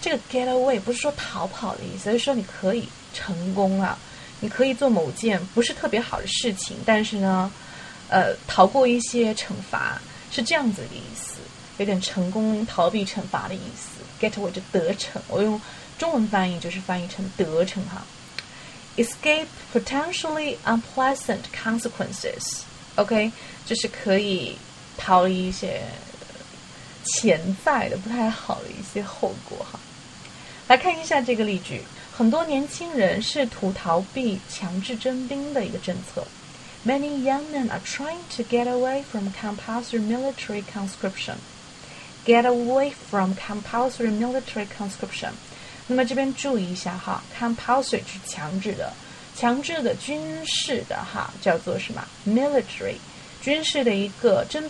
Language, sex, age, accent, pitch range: Chinese, female, 20-39, native, 195-260 Hz